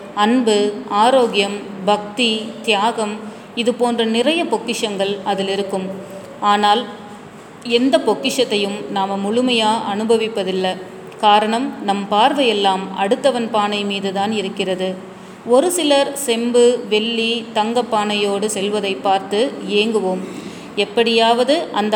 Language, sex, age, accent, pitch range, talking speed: Tamil, female, 30-49, native, 205-240 Hz, 95 wpm